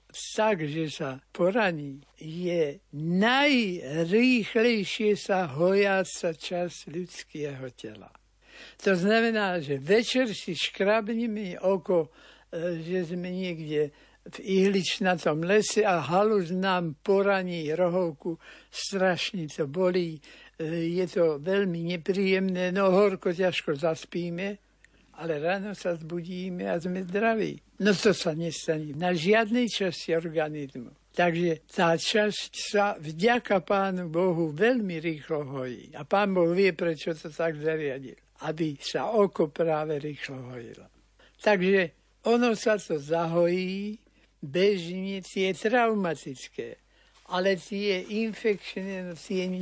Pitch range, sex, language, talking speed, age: 165-200 Hz, male, Slovak, 110 wpm, 60-79